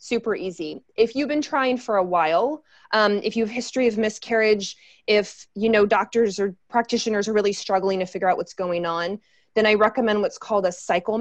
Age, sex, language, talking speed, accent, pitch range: 20-39, female, English, 205 wpm, American, 190-245 Hz